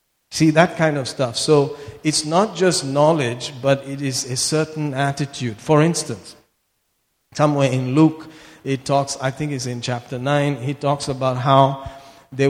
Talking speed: 165 wpm